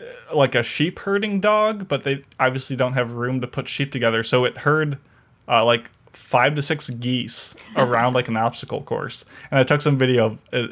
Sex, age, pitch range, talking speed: male, 20-39, 120-135 Hz, 200 wpm